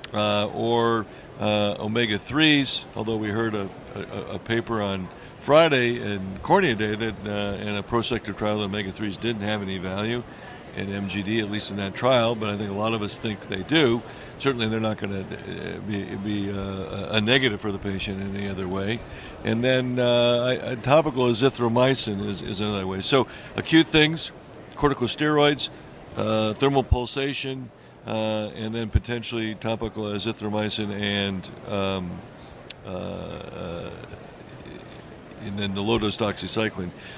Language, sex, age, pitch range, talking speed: English, male, 60-79, 100-120 Hz, 150 wpm